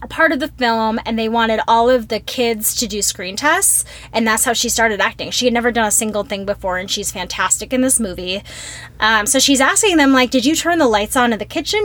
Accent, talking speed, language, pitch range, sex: American, 255 wpm, English, 215-280 Hz, female